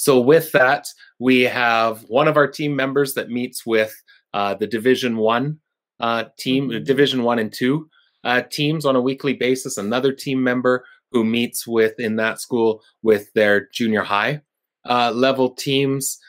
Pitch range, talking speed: 110-130 Hz, 165 wpm